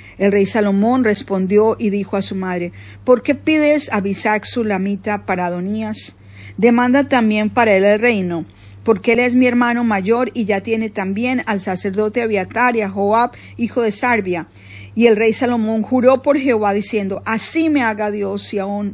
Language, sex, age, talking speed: Spanish, female, 40-59, 175 wpm